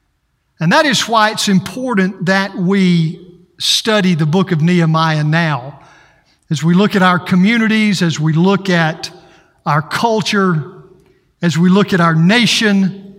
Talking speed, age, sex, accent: 145 wpm, 50-69, male, American